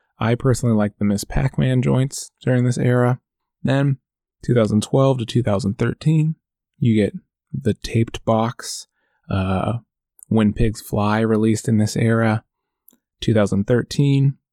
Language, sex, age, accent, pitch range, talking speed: English, male, 20-39, American, 105-130 Hz, 115 wpm